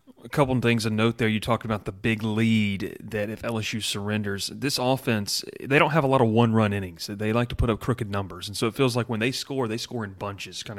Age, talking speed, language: 30-49, 260 wpm, English